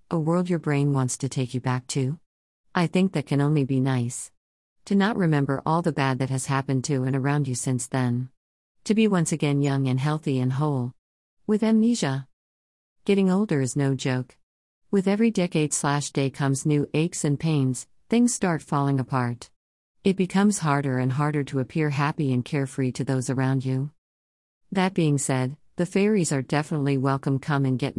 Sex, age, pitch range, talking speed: female, 50-69, 130-165 Hz, 185 wpm